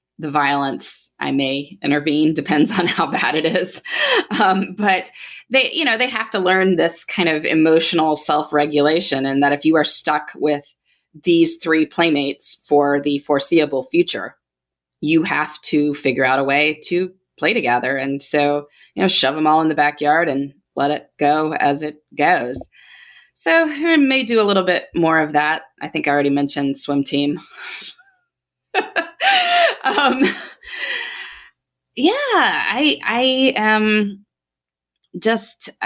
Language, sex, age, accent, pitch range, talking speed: English, female, 20-39, American, 140-185 Hz, 150 wpm